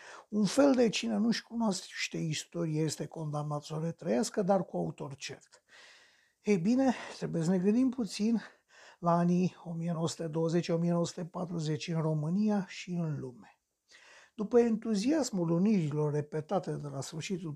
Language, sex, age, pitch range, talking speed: Romanian, male, 60-79, 165-225 Hz, 130 wpm